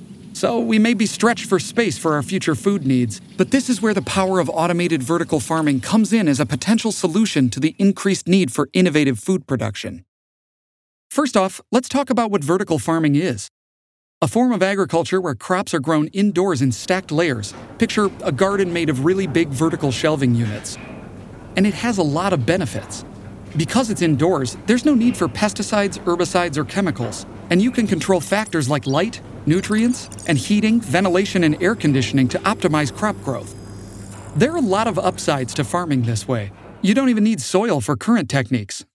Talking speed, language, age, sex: 185 wpm, English, 40-59, male